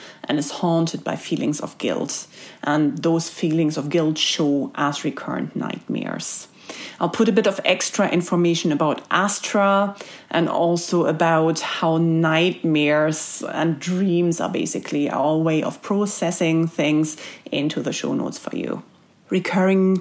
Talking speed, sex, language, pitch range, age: 140 wpm, female, English, 155-190 Hz, 30-49